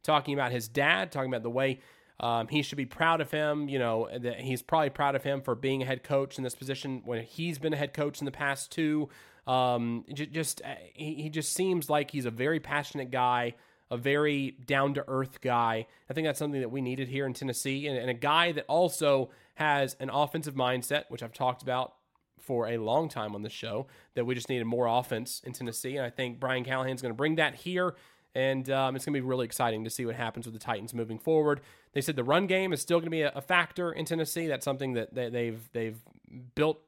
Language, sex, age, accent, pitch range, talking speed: English, male, 30-49, American, 125-150 Hz, 235 wpm